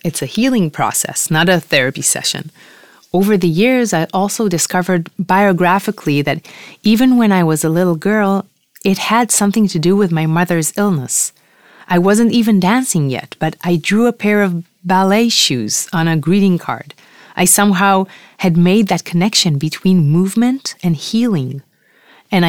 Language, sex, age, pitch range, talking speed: Hebrew, female, 30-49, 165-205 Hz, 160 wpm